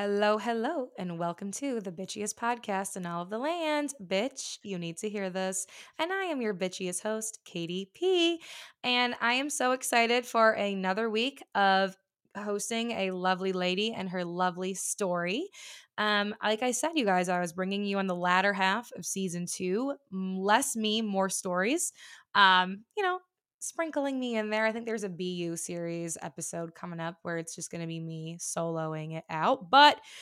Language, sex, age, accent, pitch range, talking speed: English, female, 20-39, American, 180-215 Hz, 185 wpm